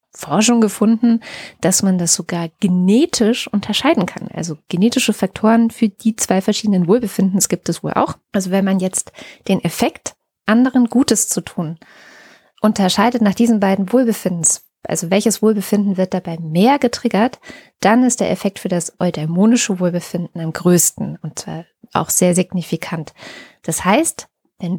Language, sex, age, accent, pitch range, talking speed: German, female, 20-39, German, 190-235 Hz, 150 wpm